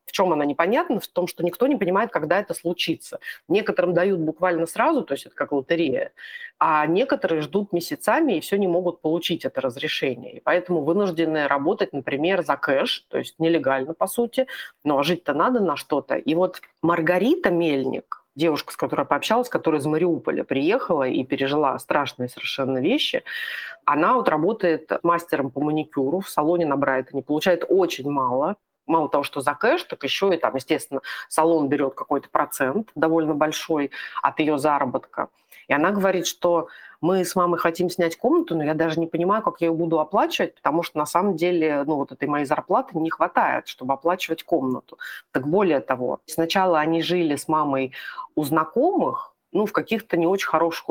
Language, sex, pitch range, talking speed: Russian, female, 150-185 Hz, 180 wpm